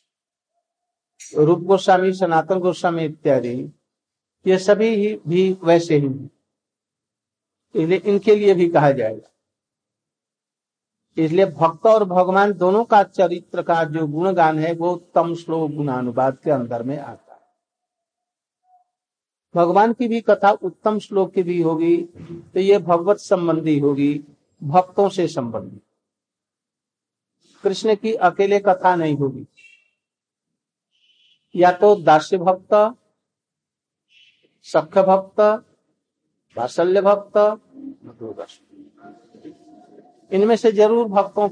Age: 60-79